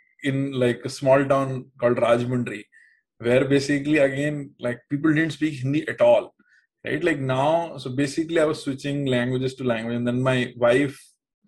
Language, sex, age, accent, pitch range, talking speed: English, male, 20-39, Indian, 130-200 Hz, 165 wpm